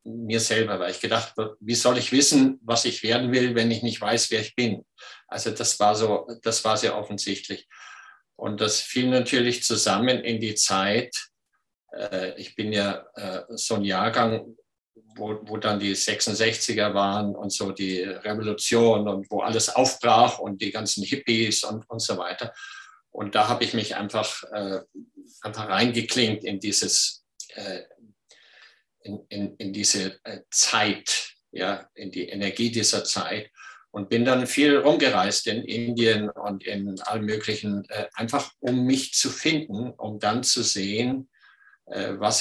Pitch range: 105-120 Hz